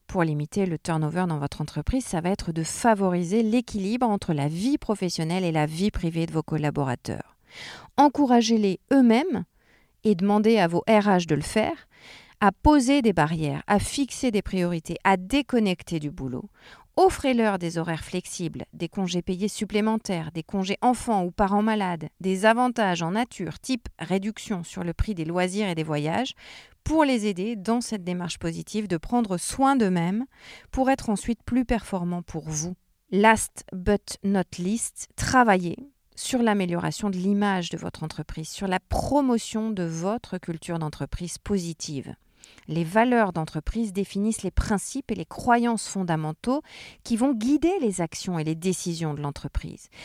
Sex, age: female, 40-59